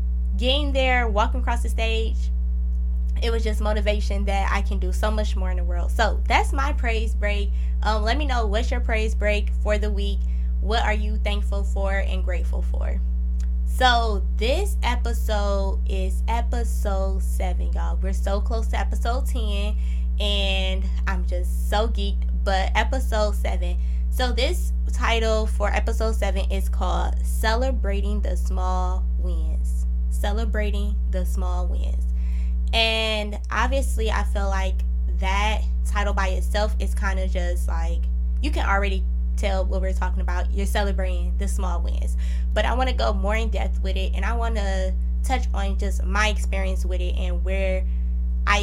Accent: American